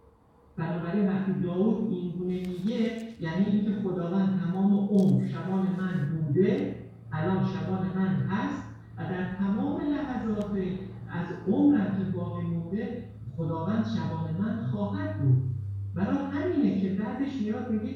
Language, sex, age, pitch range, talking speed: Persian, male, 50-69, 160-210 Hz, 125 wpm